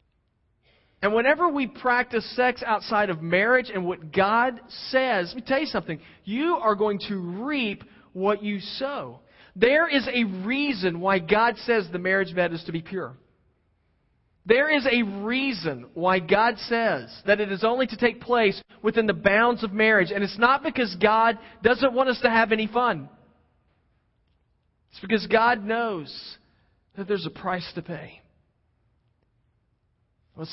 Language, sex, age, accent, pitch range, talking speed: English, male, 40-59, American, 140-220 Hz, 160 wpm